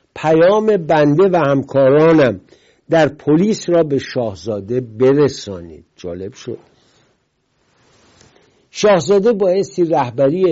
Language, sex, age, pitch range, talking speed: English, male, 60-79, 125-170 Hz, 85 wpm